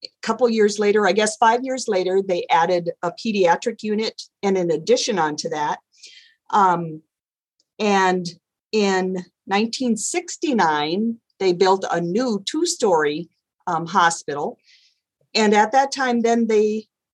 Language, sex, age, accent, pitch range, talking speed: English, female, 40-59, American, 185-235 Hz, 125 wpm